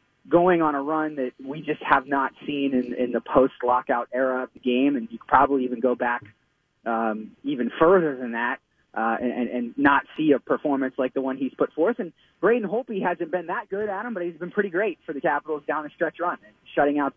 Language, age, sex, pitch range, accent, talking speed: English, 20-39, male, 140-190 Hz, American, 235 wpm